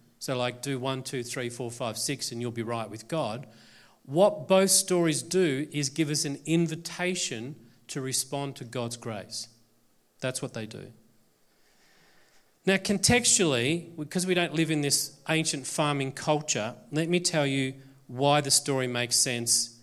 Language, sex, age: English, male, 40-59